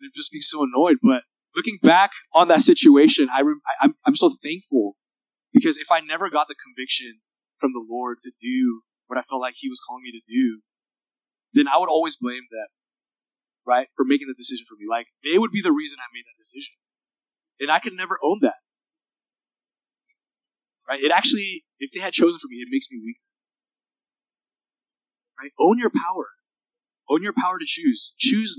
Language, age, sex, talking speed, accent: English, 20-39, male, 190 wpm, American